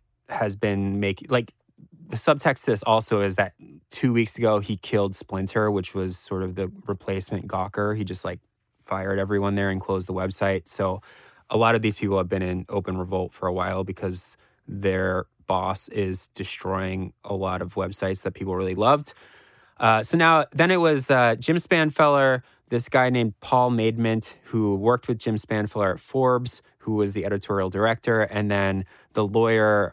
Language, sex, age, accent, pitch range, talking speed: English, male, 20-39, American, 95-115 Hz, 180 wpm